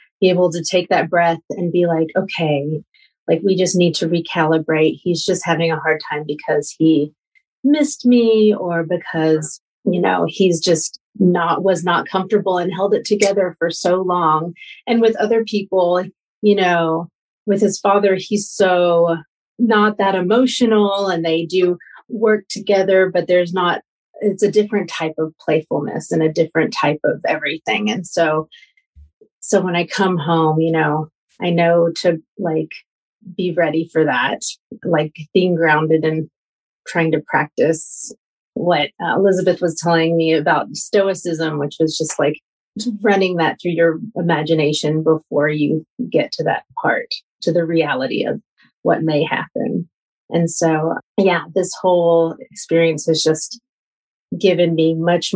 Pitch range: 160-195 Hz